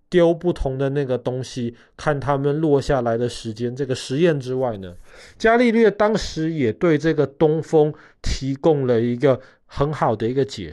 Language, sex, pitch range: Chinese, male, 120-175 Hz